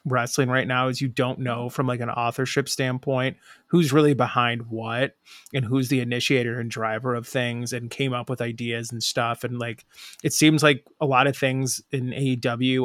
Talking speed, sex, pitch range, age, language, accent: 195 wpm, male, 120-135 Hz, 30-49, English, American